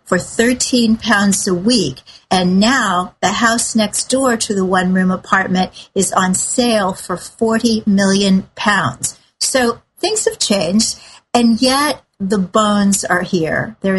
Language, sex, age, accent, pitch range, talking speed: English, female, 50-69, American, 190-230 Hz, 140 wpm